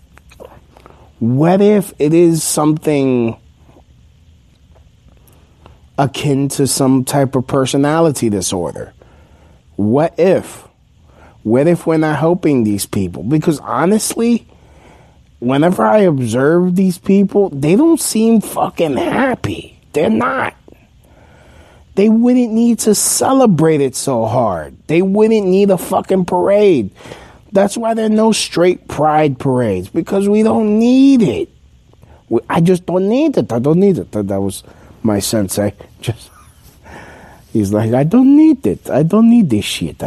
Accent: American